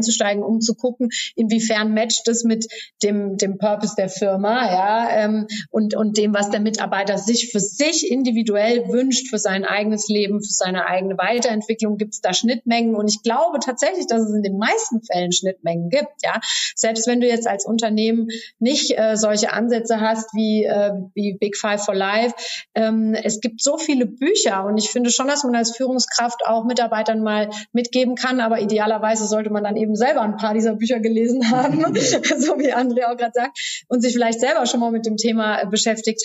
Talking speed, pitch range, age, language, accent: 190 wpm, 215-245 Hz, 30-49, German, German